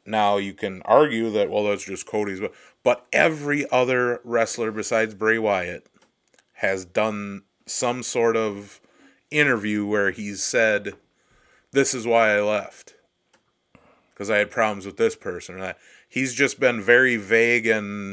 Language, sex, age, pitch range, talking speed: English, male, 30-49, 105-135 Hz, 150 wpm